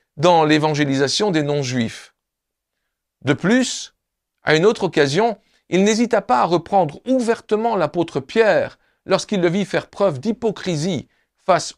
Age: 40-59